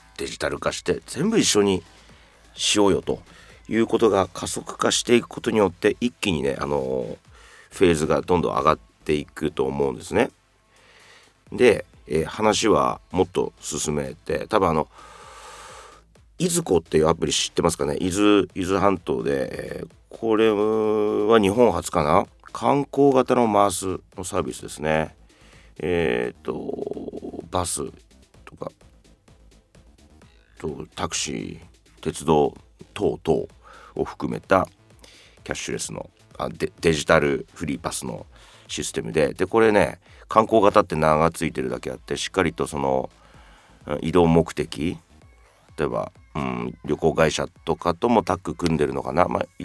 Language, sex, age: Japanese, male, 40-59